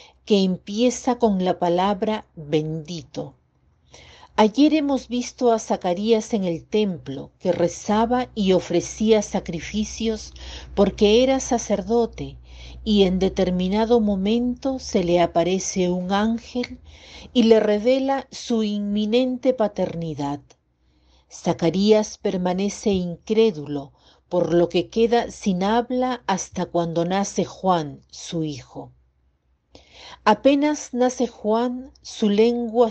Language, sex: Spanish, female